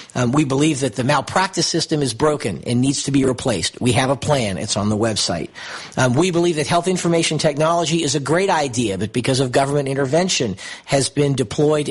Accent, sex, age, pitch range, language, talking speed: American, male, 50-69, 130-170 Hz, English, 205 wpm